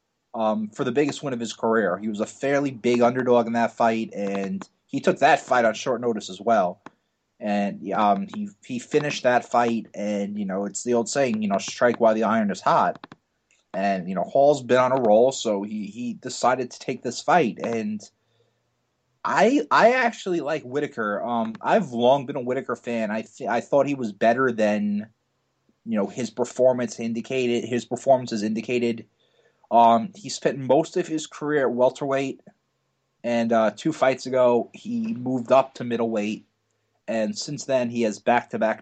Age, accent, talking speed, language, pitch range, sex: 30-49, American, 185 wpm, English, 110-140 Hz, male